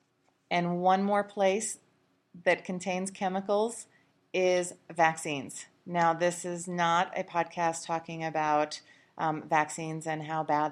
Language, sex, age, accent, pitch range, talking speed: English, female, 30-49, American, 145-165 Hz, 125 wpm